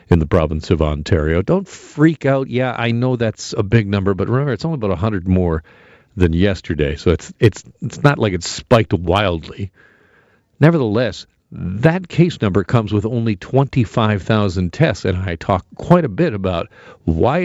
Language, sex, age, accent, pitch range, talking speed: English, male, 50-69, American, 95-130 Hz, 170 wpm